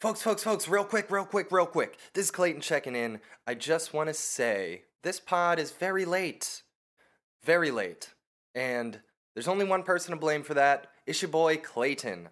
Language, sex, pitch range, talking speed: English, male, 125-175 Hz, 190 wpm